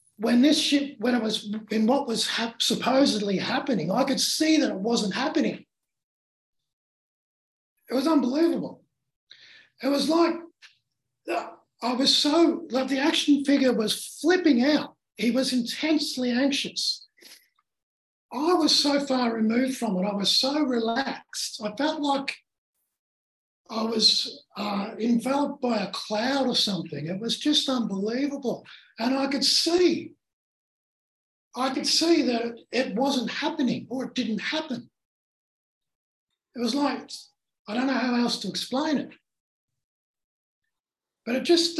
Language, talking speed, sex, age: English, 135 wpm, male, 50-69